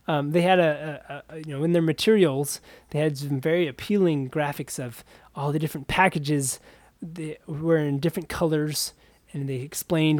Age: 20-39